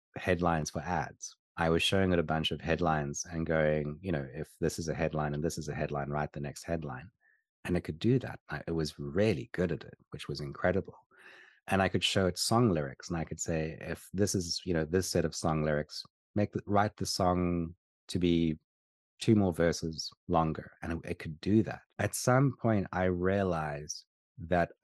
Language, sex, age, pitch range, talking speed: English, male, 30-49, 80-95 Hz, 210 wpm